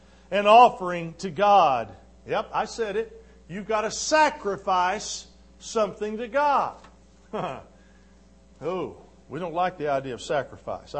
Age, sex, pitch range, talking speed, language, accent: 50-69, male, 160-210 Hz, 125 wpm, English, American